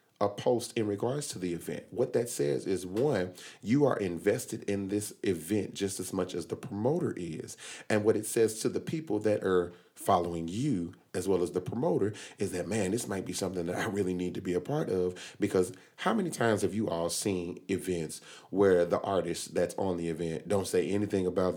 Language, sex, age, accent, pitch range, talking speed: English, male, 30-49, American, 95-120 Hz, 215 wpm